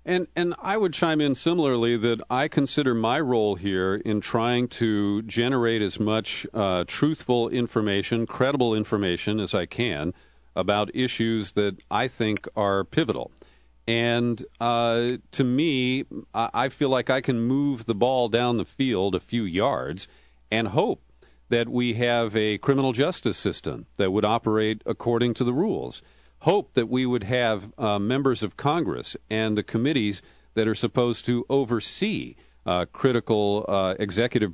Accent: American